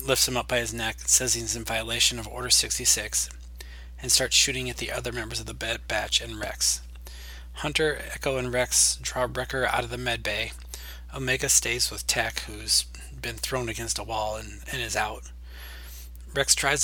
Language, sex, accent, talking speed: English, male, American, 185 wpm